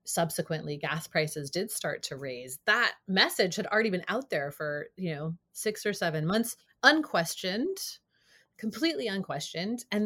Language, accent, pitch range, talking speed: English, American, 155-215 Hz, 150 wpm